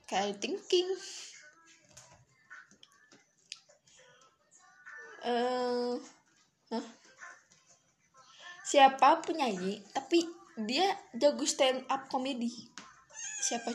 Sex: female